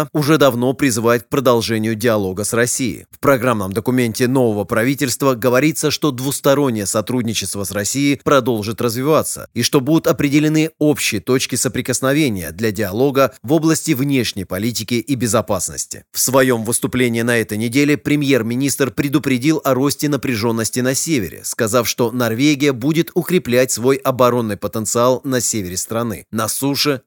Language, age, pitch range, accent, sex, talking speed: Russian, 30-49, 115-145 Hz, native, male, 135 wpm